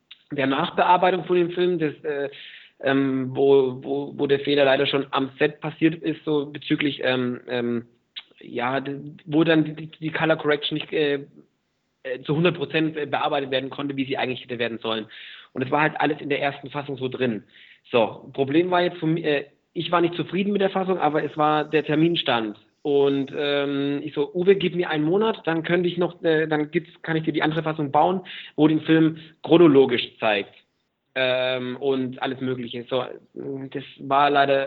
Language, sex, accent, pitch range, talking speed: German, male, German, 135-160 Hz, 185 wpm